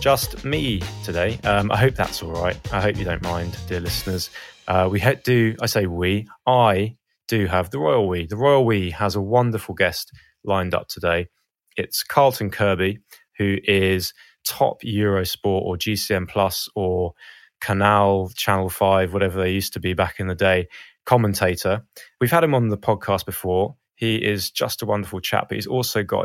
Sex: male